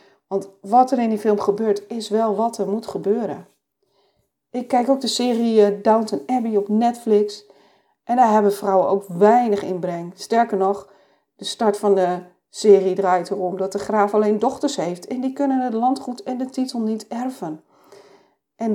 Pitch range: 195-245 Hz